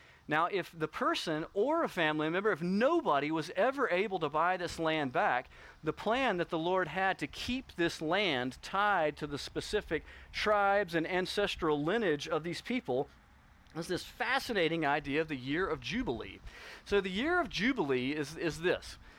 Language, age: English, 40-59